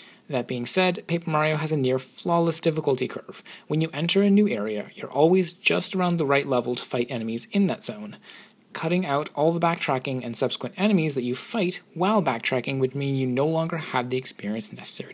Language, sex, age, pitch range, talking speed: English, male, 30-49, 130-175 Hz, 205 wpm